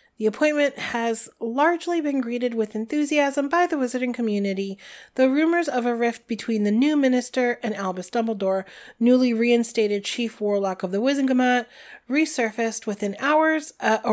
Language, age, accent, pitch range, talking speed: English, 30-49, American, 205-265 Hz, 150 wpm